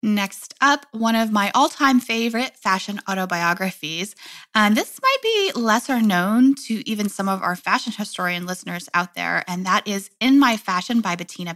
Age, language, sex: 20-39, English, female